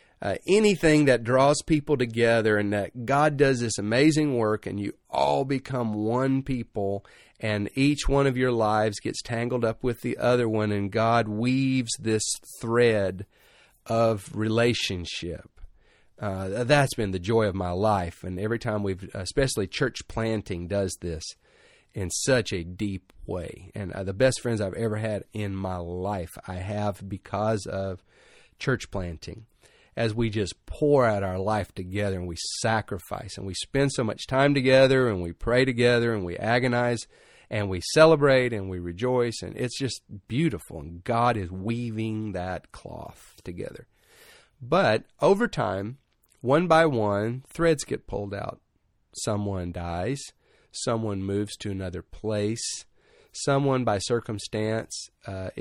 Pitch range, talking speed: 100-125 Hz, 150 wpm